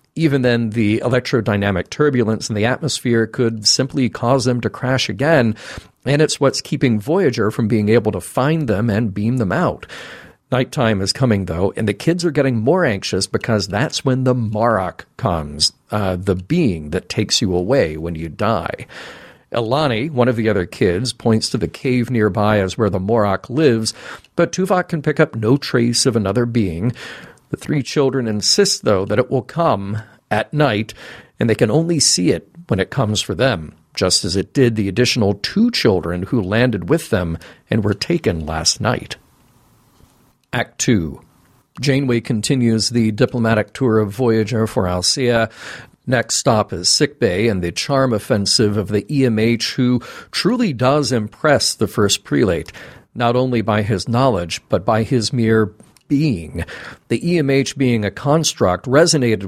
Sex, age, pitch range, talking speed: male, 40-59, 105-130 Hz, 170 wpm